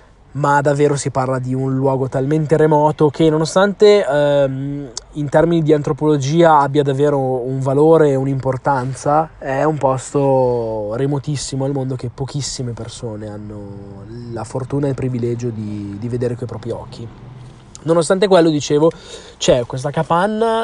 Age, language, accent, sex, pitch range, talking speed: 20-39, Italian, native, male, 120-150 Hz, 140 wpm